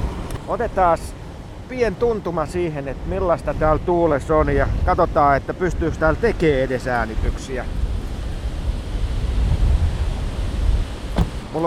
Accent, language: native, Finnish